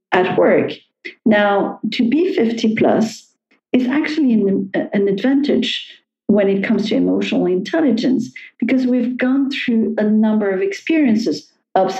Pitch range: 195-250 Hz